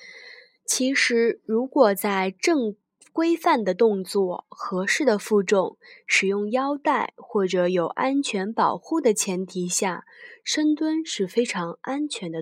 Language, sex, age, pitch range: Chinese, female, 20-39, 190-315 Hz